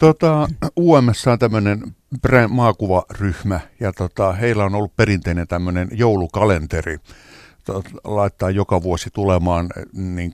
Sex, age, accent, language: male, 60-79, native, Finnish